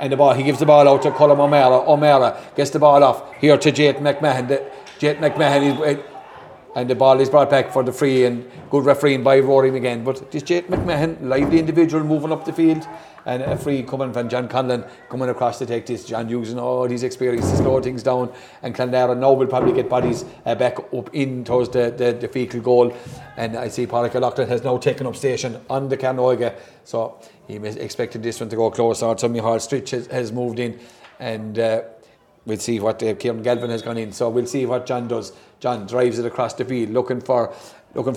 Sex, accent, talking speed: male, Irish, 220 wpm